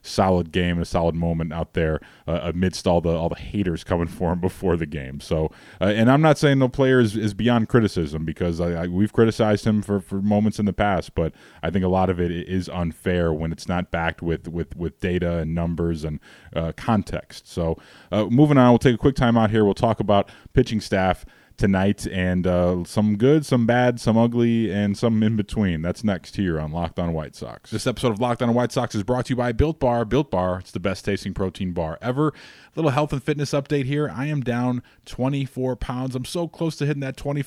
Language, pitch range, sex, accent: English, 90-125 Hz, male, American